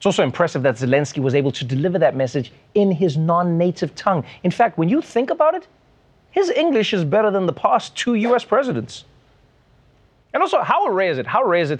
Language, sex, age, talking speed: English, male, 30-49, 215 wpm